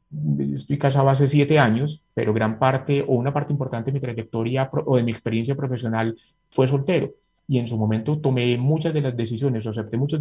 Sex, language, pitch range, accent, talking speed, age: male, Spanish, 115-145 Hz, Colombian, 195 wpm, 30-49